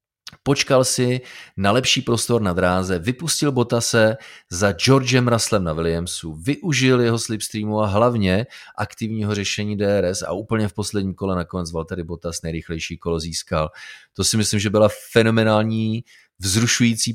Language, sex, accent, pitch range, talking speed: Czech, male, native, 100-115 Hz, 145 wpm